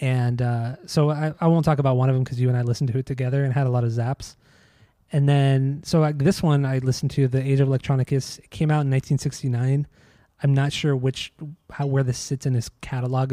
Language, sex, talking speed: English, male, 245 wpm